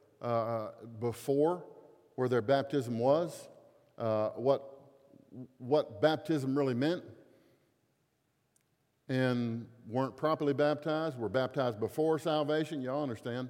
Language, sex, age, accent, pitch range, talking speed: English, male, 50-69, American, 115-145 Hz, 100 wpm